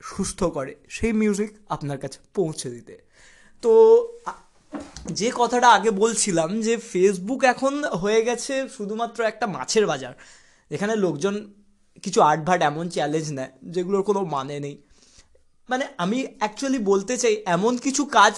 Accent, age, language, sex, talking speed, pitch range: native, 20-39, Bengali, male, 135 wpm, 180-245 Hz